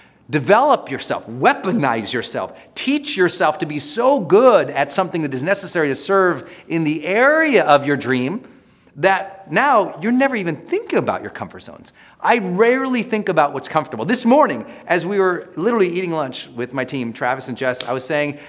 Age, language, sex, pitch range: 40-59, English, male, 135-185 Hz